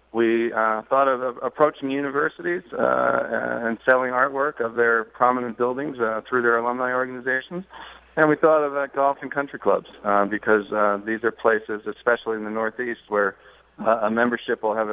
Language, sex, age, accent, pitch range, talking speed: English, male, 40-59, American, 110-125 Hz, 180 wpm